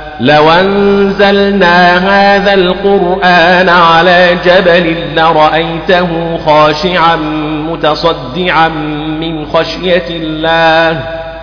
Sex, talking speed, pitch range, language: male, 65 wpm, 155-175 Hz, Arabic